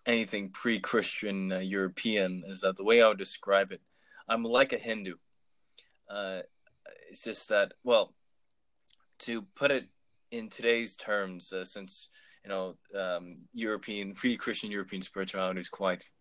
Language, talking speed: English, 145 wpm